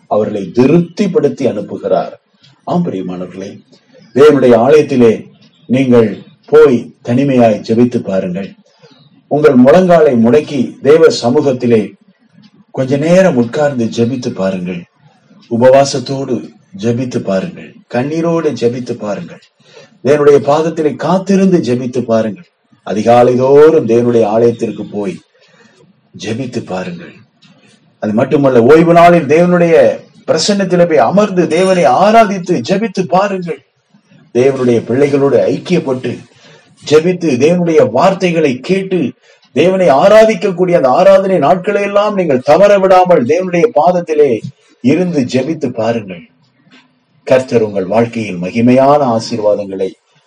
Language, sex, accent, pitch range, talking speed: Tamil, male, native, 115-180 Hz, 90 wpm